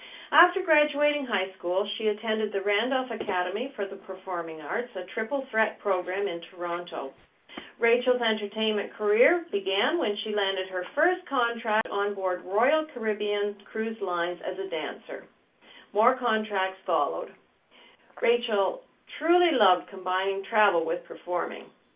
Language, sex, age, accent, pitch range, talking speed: English, female, 50-69, American, 195-270 Hz, 130 wpm